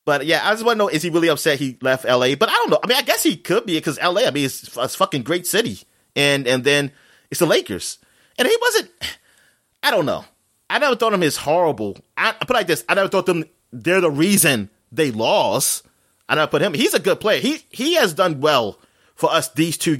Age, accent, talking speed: 30-49, American, 245 wpm